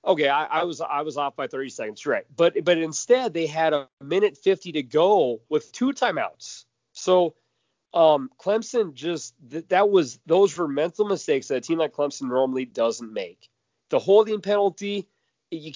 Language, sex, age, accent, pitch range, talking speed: English, male, 30-49, American, 145-205 Hz, 180 wpm